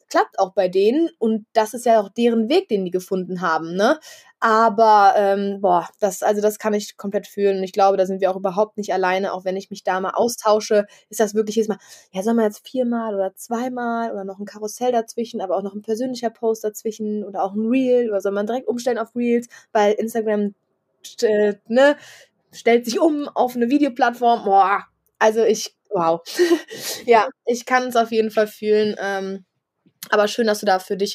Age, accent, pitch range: 20-39, German, 195-230 Hz